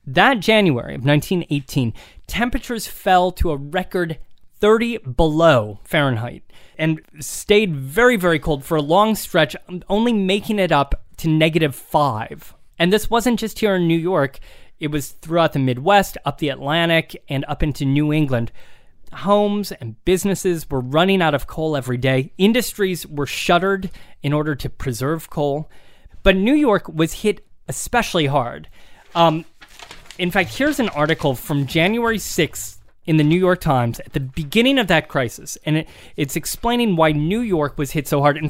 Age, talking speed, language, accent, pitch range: 20-39, 165 wpm, English, American, 140-195 Hz